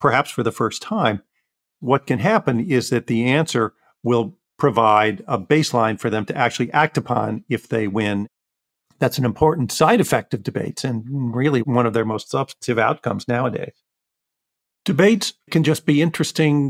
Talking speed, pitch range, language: 165 wpm, 110-145 Hz, English